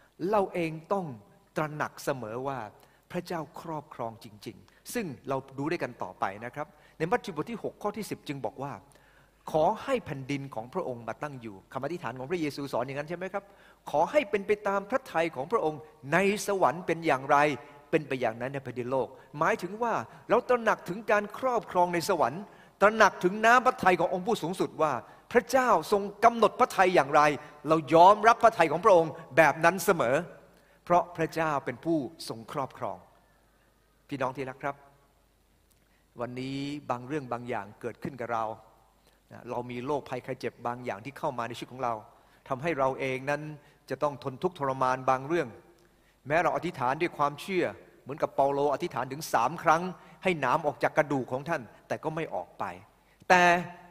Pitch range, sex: 130-180 Hz, male